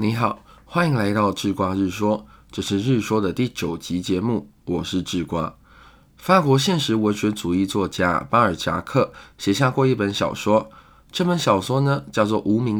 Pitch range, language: 100-135 Hz, Chinese